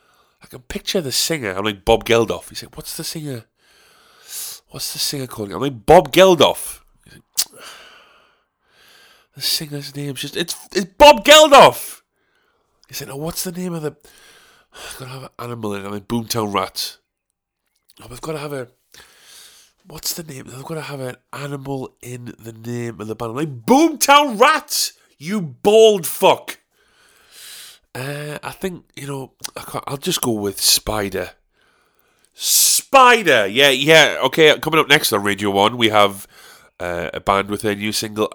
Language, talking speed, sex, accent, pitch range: English, 175 wpm, male, British, 110-175 Hz